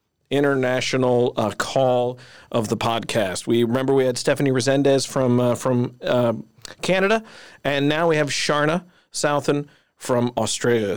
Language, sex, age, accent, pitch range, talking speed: English, male, 40-59, American, 115-145 Hz, 135 wpm